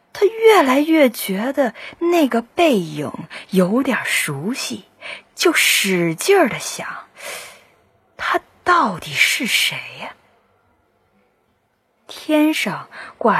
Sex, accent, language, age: female, native, Chinese, 30-49